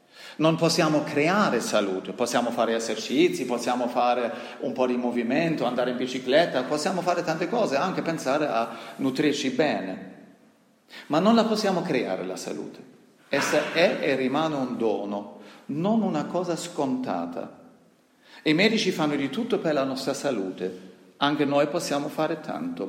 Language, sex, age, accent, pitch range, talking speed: Italian, male, 40-59, native, 105-170 Hz, 145 wpm